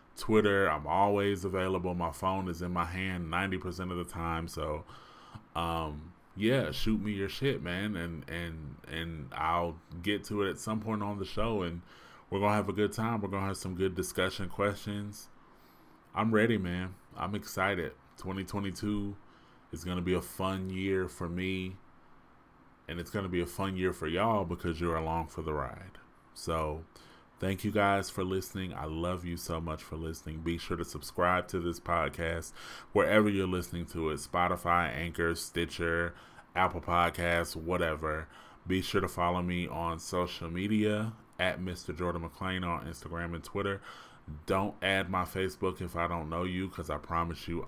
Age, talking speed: 20-39, 180 wpm